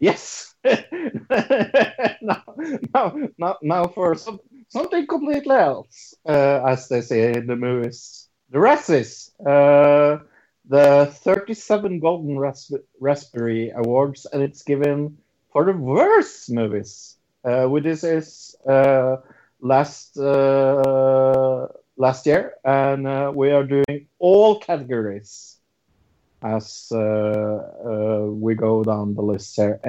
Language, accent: English, Norwegian